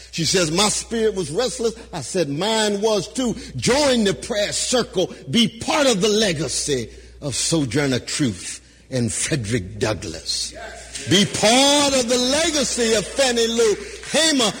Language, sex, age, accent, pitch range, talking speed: English, male, 50-69, American, 205-275 Hz, 145 wpm